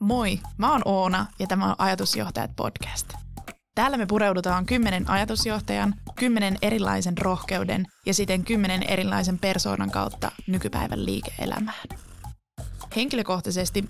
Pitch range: 170-200 Hz